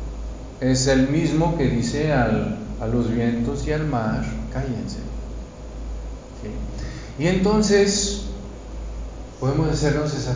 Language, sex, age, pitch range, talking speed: Spanish, male, 50-69, 120-180 Hz, 100 wpm